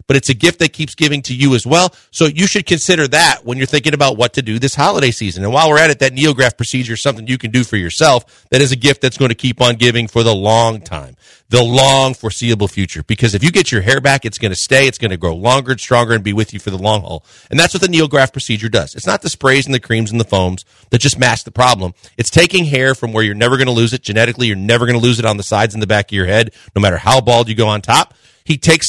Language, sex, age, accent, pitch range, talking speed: English, male, 40-59, American, 115-140 Hz, 300 wpm